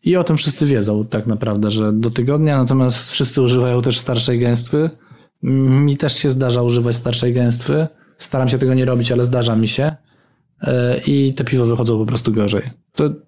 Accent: native